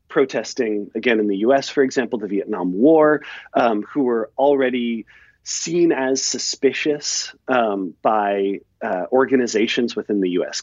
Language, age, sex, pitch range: English, 40-59, male, 110-150 Hz